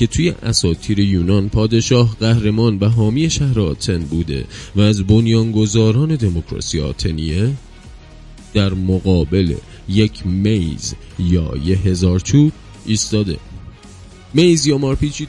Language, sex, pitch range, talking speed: Persian, male, 90-120 Hz, 100 wpm